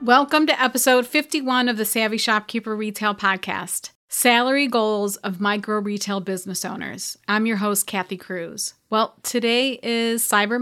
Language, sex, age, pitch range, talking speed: English, female, 30-49, 195-235 Hz, 145 wpm